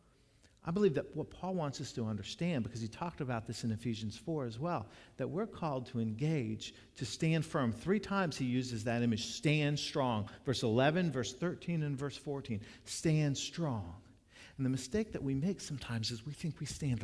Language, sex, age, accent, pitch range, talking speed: English, male, 50-69, American, 115-155 Hz, 195 wpm